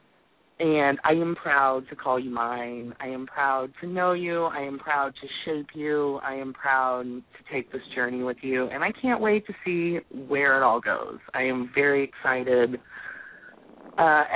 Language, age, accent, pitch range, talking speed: English, 30-49, American, 135-180 Hz, 185 wpm